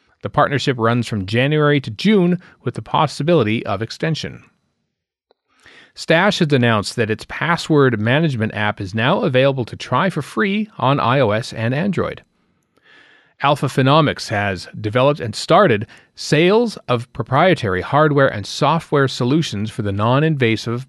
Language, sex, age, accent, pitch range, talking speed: English, male, 40-59, American, 115-155 Hz, 135 wpm